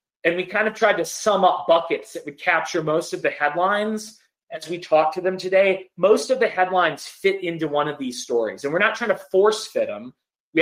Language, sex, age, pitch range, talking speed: English, male, 30-49, 160-210 Hz, 230 wpm